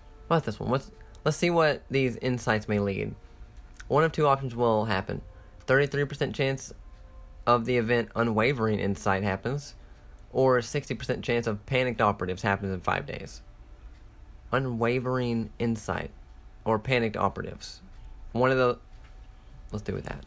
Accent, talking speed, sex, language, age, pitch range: American, 140 wpm, male, English, 30-49, 100-125 Hz